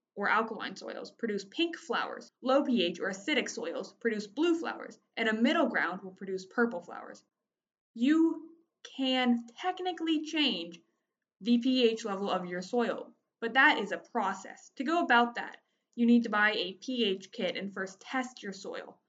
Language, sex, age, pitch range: English, female, 20-39, 200-265 Hz